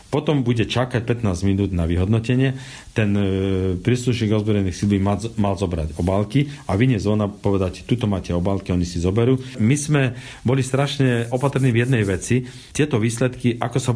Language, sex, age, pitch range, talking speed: Slovak, male, 40-59, 100-125 Hz, 155 wpm